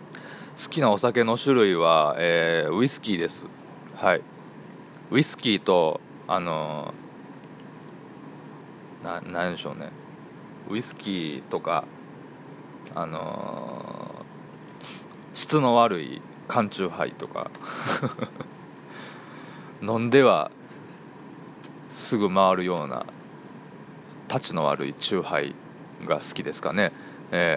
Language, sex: Japanese, male